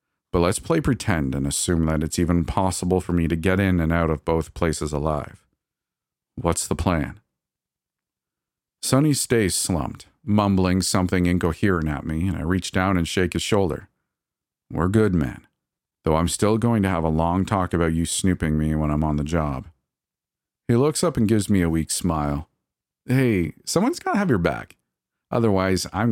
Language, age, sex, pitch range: English, 40-59, male, 80-105 Hz